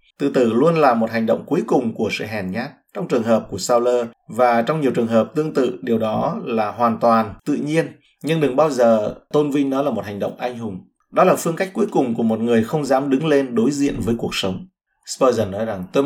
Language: Vietnamese